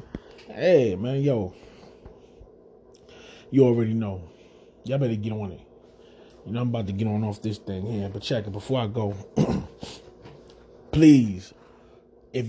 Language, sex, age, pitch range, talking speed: English, male, 20-39, 115-135 Hz, 145 wpm